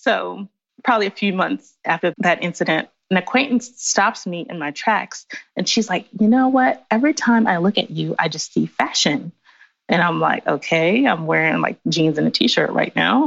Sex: female